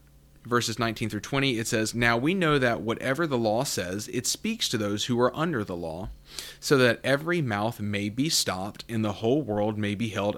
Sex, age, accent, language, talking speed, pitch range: male, 30-49, American, English, 215 wpm, 100-125 Hz